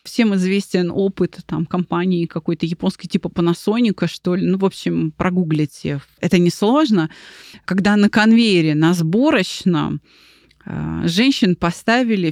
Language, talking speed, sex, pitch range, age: Russian, 115 wpm, female, 175-230 Hz, 20-39